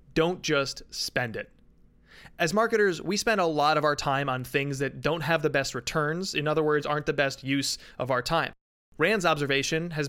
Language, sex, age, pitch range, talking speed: English, male, 20-39, 140-170 Hz, 200 wpm